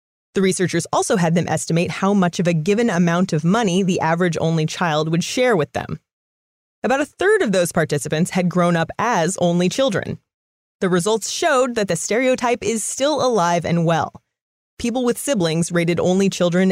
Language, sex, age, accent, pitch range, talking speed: English, female, 30-49, American, 170-230 Hz, 185 wpm